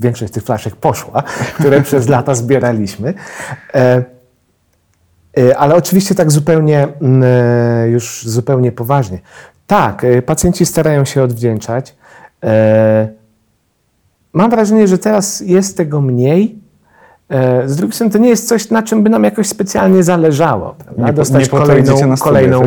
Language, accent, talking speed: Polish, native, 120 wpm